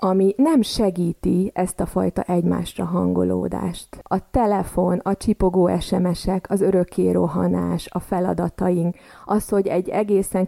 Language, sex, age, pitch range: Hungarian, female, 30-49, 180-210 Hz